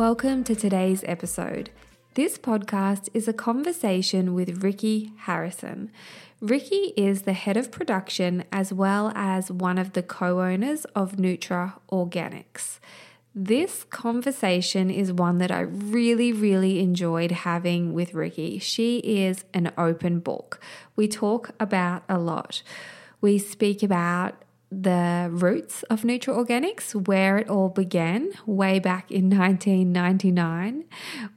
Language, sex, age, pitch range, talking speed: English, female, 20-39, 180-215 Hz, 125 wpm